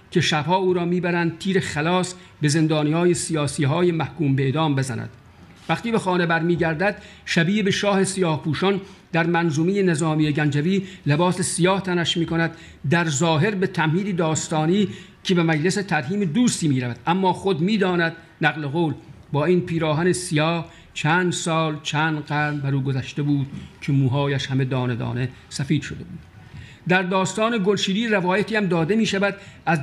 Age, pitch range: 50-69, 150-190 Hz